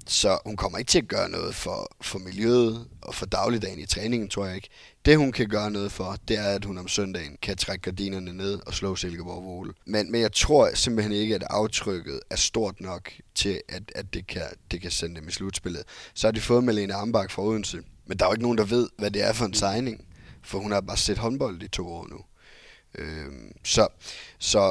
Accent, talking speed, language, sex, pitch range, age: native, 230 wpm, Danish, male, 90-110 Hz, 20-39